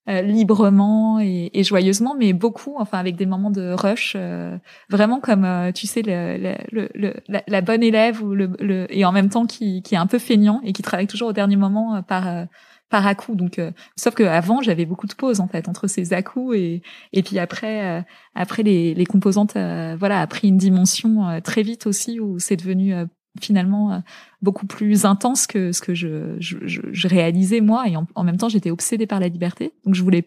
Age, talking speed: 20-39, 230 wpm